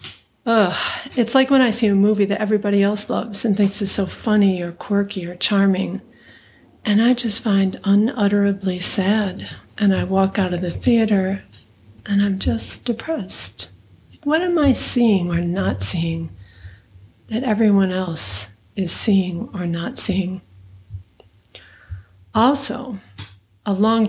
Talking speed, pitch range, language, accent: 140 wpm, 185-220 Hz, English, American